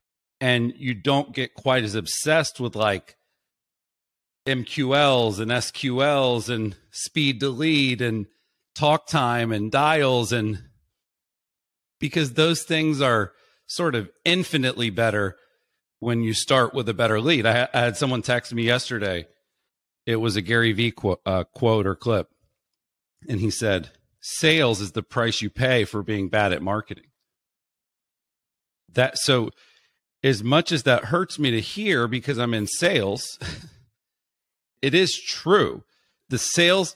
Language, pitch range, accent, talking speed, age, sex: English, 110-145 Hz, American, 135 wpm, 40-59, male